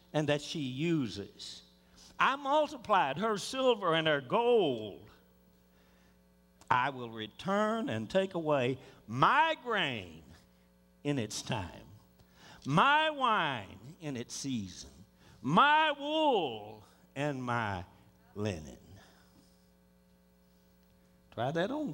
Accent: American